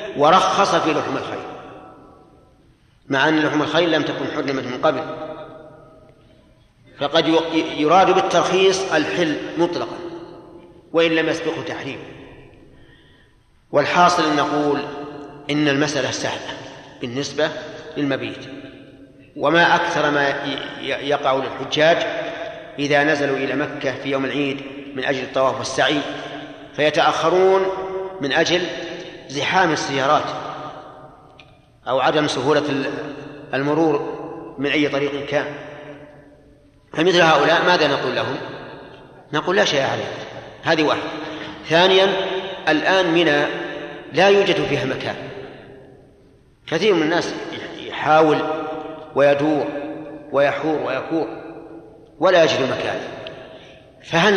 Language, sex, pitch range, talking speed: Arabic, male, 140-165 Hz, 95 wpm